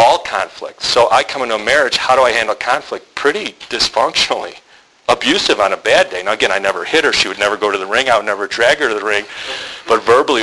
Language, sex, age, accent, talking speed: English, male, 40-59, American, 245 wpm